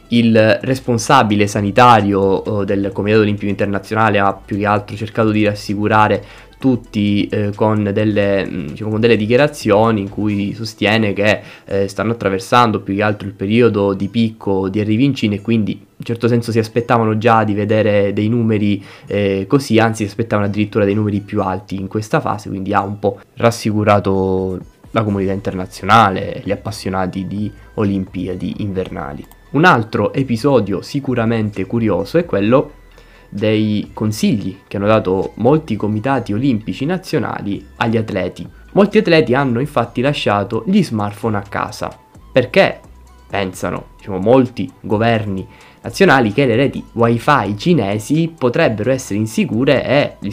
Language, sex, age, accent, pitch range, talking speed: Italian, male, 20-39, native, 100-120 Hz, 145 wpm